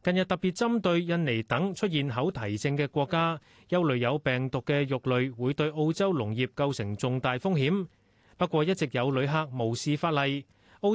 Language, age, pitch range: Chinese, 30-49, 130-180 Hz